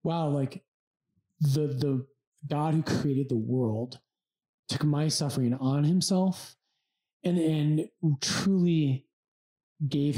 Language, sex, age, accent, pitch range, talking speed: English, male, 30-49, American, 130-170 Hz, 105 wpm